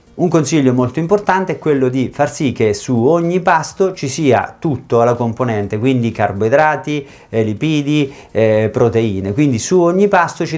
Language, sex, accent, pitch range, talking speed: Italian, male, native, 115-140 Hz, 160 wpm